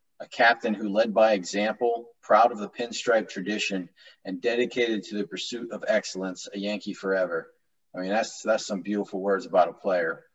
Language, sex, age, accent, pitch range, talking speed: English, male, 30-49, American, 95-115 Hz, 180 wpm